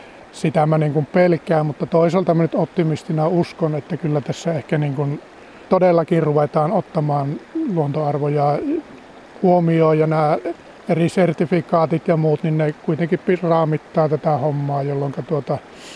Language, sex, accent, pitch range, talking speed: Finnish, male, native, 155-170 Hz, 135 wpm